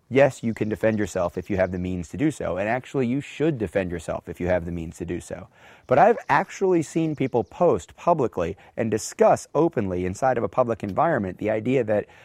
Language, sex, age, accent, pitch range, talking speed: Danish, male, 30-49, American, 95-130 Hz, 220 wpm